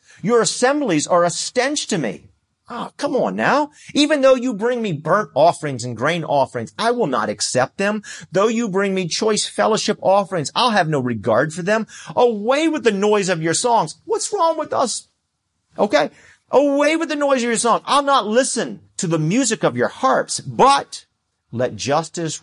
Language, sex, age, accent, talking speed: English, male, 40-59, American, 190 wpm